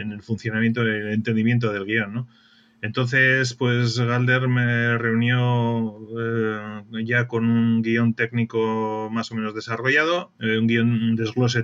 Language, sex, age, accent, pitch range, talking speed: Spanish, male, 30-49, Spanish, 110-125 Hz, 155 wpm